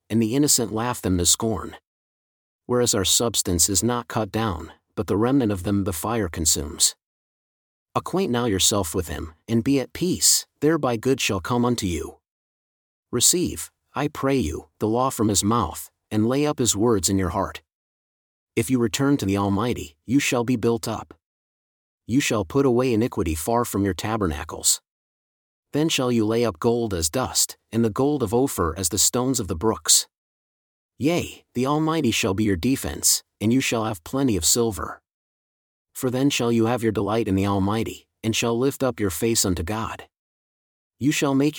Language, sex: English, male